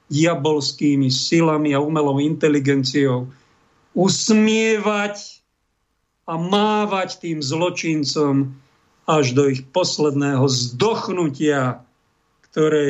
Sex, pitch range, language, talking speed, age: male, 150-185 Hz, Slovak, 75 wpm, 50-69